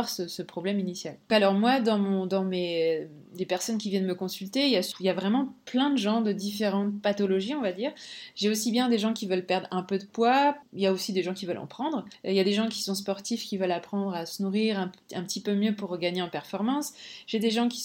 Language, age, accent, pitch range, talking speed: French, 20-39, French, 190-230 Hz, 250 wpm